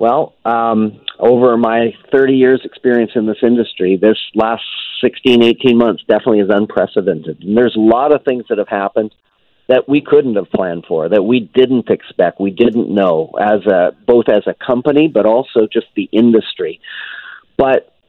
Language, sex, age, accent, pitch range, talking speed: English, male, 50-69, American, 110-130 Hz, 175 wpm